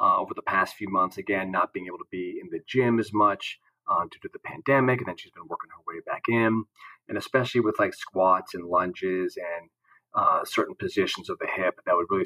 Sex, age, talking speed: male, 30-49, 235 wpm